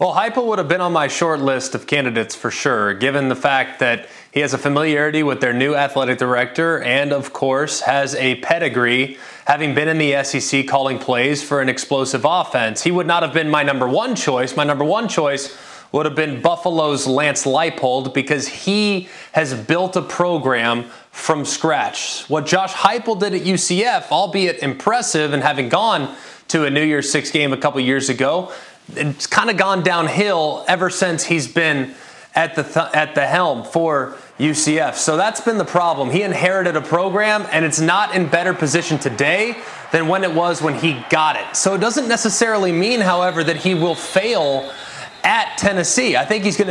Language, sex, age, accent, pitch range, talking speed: English, male, 20-39, American, 140-175 Hz, 190 wpm